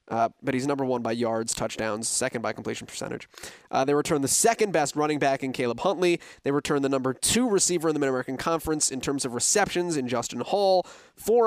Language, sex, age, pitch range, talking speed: English, male, 20-39, 140-185 Hz, 215 wpm